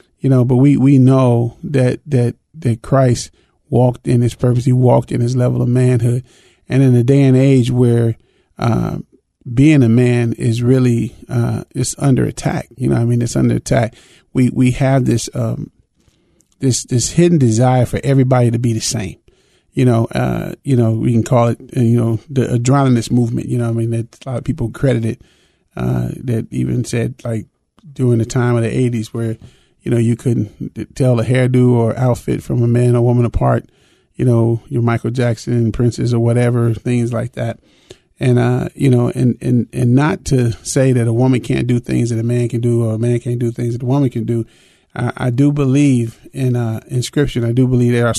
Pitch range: 115-130 Hz